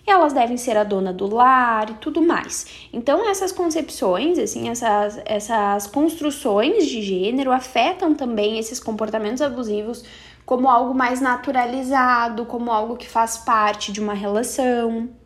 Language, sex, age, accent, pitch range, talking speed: Portuguese, female, 10-29, Brazilian, 225-280 Hz, 140 wpm